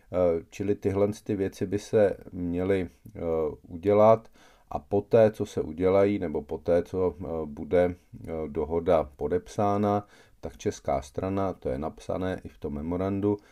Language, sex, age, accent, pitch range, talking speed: Czech, male, 40-59, native, 85-105 Hz, 130 wpm